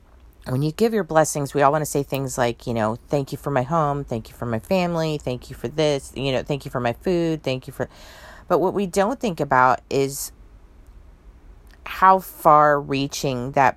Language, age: English, 30-49